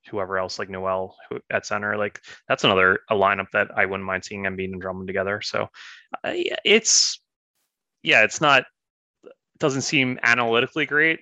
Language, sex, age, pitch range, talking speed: English, male, 20-39, 105-135 Hz, 160 wpm